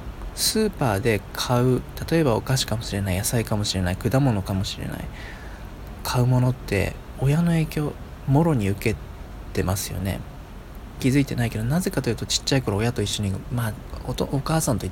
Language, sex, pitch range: Japanese, male, 100-130 Hz